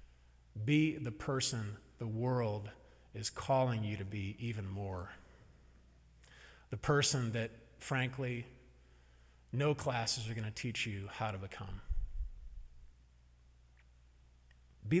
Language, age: English, 40-59